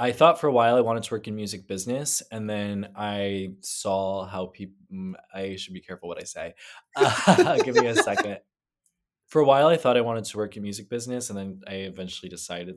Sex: male